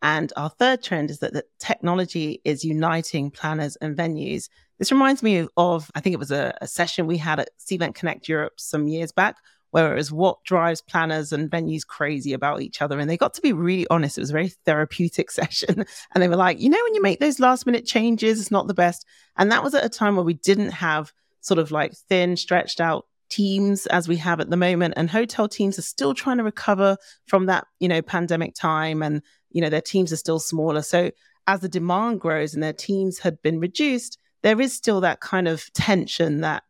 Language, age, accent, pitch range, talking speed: English, 30-49, British, 155-195 Hz, 225 wpm